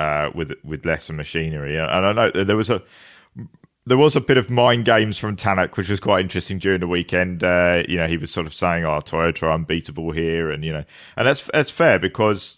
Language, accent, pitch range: English, British, 90-105 Hz